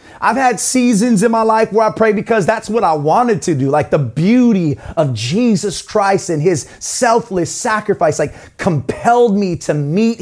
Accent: American